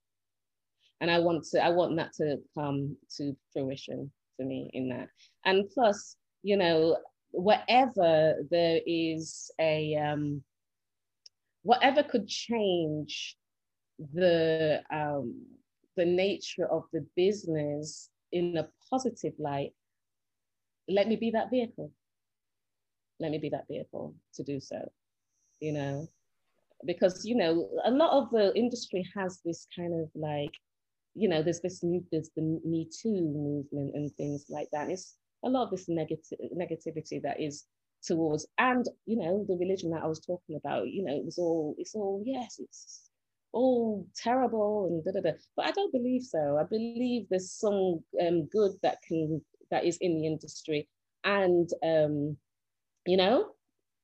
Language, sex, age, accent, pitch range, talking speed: English, female, 30-49, British, 145-190 Hz, 150 wpm